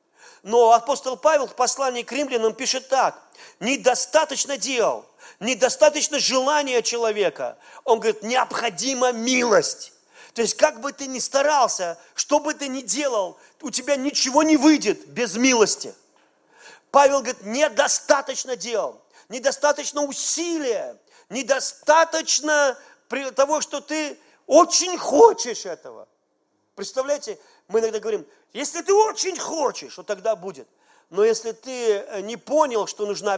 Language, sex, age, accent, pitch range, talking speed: Russian, male, 40-59, native, 240-295 Hz, 120 wpm